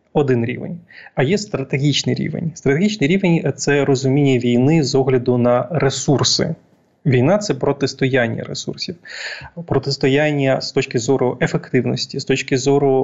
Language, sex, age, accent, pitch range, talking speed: Ukrainian, male, 20-39, native, 125-145 Hz, 130 wpm